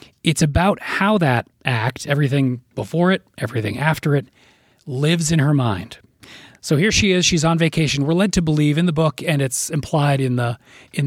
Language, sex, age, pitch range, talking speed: English, male, 30-49, 125-160 Hz, 190 wpm